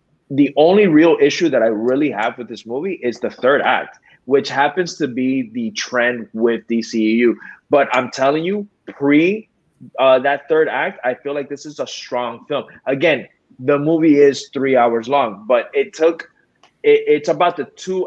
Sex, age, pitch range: male, 20-39, 125-155 Hz